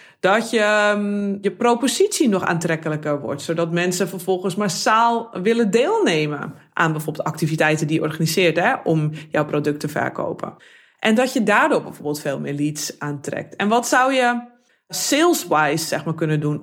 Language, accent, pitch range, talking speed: Dutch, Dutch, 165-235 Hz, 155 wpm